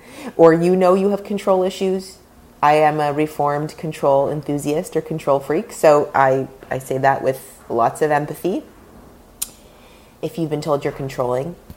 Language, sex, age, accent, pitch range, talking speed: English, female, 30-49, American, 135-160 Hz, 160 wpm